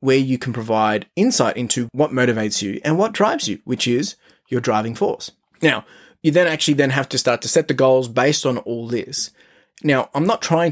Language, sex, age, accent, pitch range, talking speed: English, male, 20-39, Australian, 115-150 Hz, 215 wpm